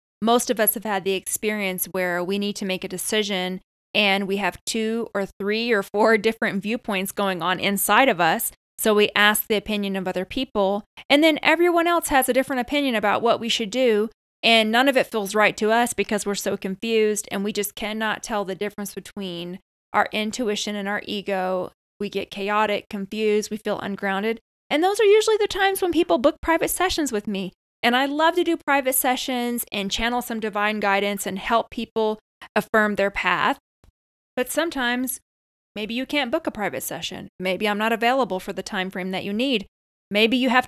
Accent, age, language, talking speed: American, 20-39, English, 200 wpm